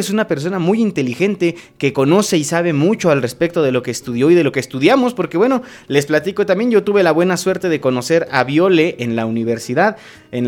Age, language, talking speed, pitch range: 30-49, Spanish, 225 wpm, 145-200 Hz